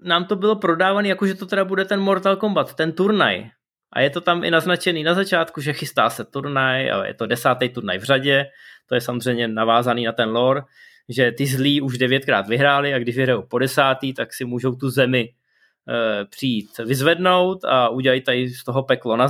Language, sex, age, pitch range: Czech, male, 20-39, 130-175 Hz